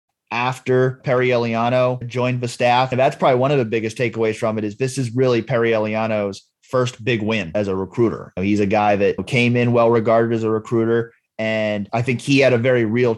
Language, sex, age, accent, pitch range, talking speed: English, male, 30-49, American, 105-115 Hz, 210 wpm